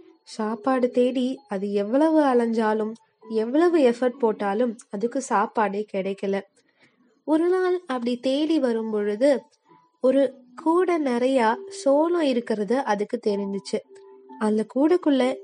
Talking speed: 100 wpm